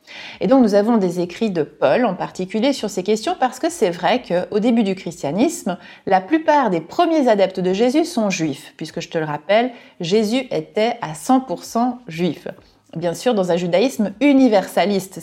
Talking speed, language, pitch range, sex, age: 180 wpm, French, 185-255 Hz, female, 30-49